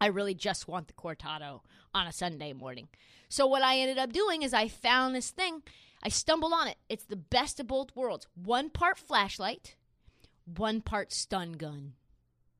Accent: American